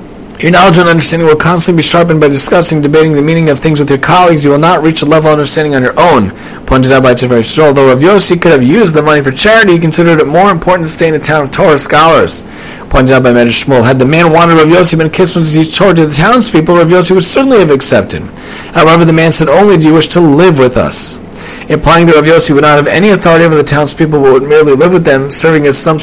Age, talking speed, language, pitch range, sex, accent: 30-49, 265 wpm, English, 150-185 Hz, male, American